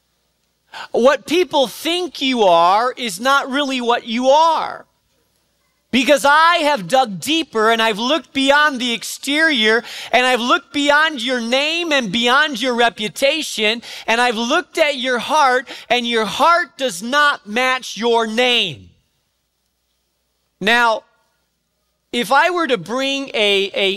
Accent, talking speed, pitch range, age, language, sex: American, 135 wpm, 200-280 Hz, 40-59, English, male